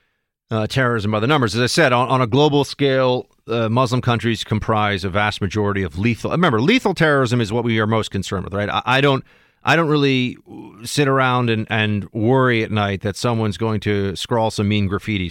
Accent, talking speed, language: American, 210 wpm, English